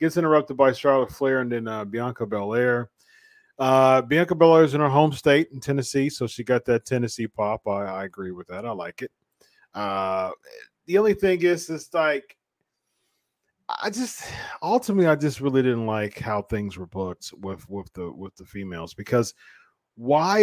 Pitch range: 115-155 Hz